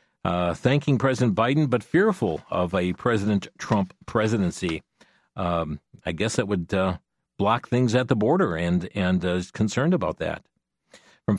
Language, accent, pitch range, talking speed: English, American, 100-135 Hz, 160 wpm